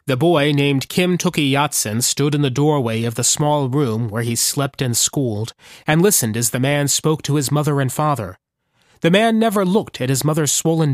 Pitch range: 125-160 Hz